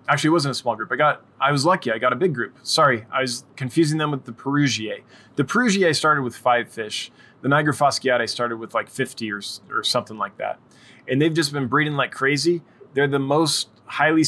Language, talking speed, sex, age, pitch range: English, 225 wpm, male, 20-39, 120-150 Hz